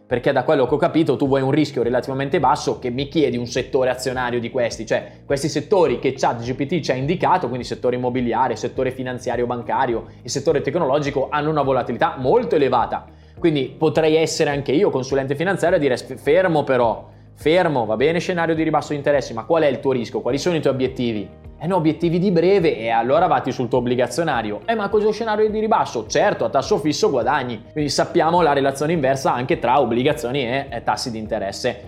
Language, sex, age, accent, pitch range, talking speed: Italian, male, 20-39, native, 125-165 Hz, 205 wpm